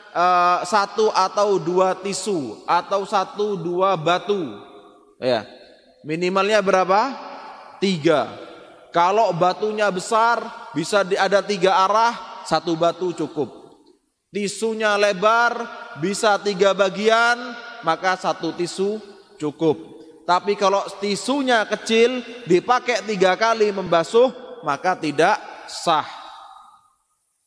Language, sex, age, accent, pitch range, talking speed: Indonesian, male, 20-39, native, 170-215 Hz, 95 wpm